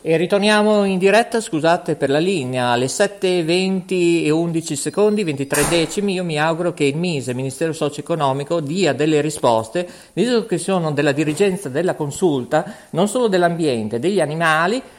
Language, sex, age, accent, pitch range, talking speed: Italian, male, 50-69, native, 150-215 Hz, 155 wpm